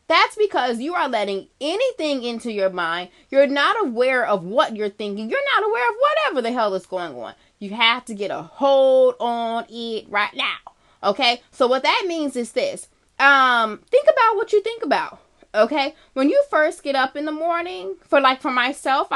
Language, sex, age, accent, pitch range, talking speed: English, female, 20-39, American, 230-290 Hz, 195 wpm